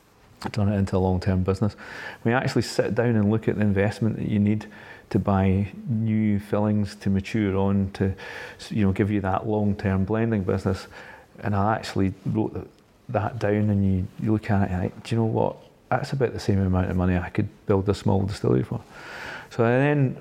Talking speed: 215 wpm